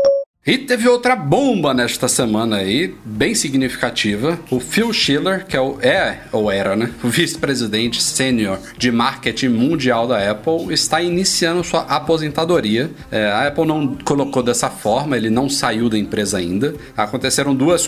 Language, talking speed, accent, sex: Portuguese, 150 wpm, Brazilian, male